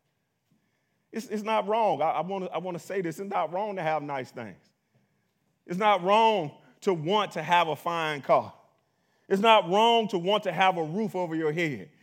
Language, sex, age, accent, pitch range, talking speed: English, male, 30-49, American, 140-195 Hz, 200 wpm